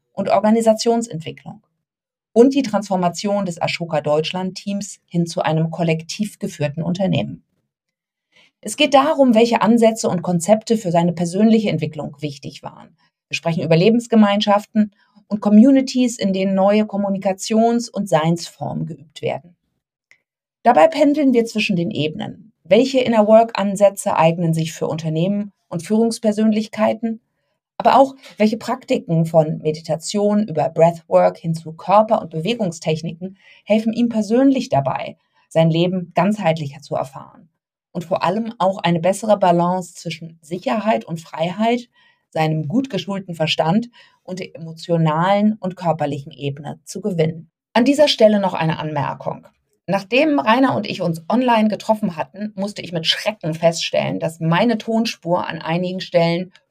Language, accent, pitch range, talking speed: German, German, 165-220 Hz, 130 wpm